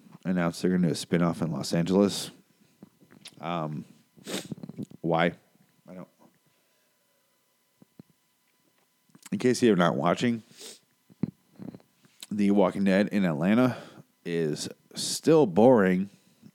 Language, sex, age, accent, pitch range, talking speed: English, male, 30-49, American, 95-125 Hz, 100 wpm